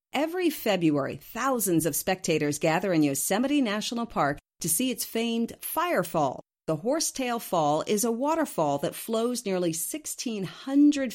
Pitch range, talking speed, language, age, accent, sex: 160-230 Hz, 135 wpm, English, 40-59, American, female